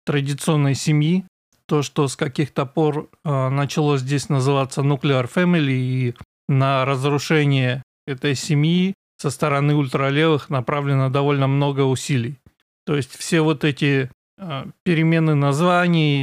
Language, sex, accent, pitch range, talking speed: Russian, male, native, 140-160 Hz, 115 wpm